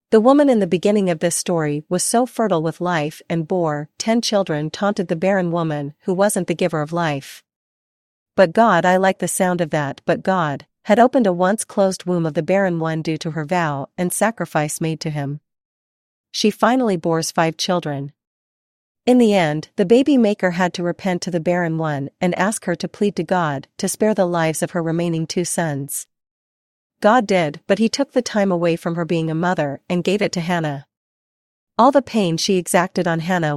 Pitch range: 155-195 Hz